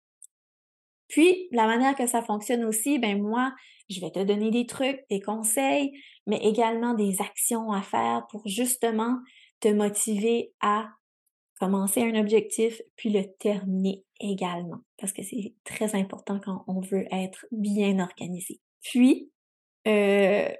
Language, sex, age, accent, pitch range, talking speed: French, female, 30-49, Canadian, 200-240 Hz, 140 wpm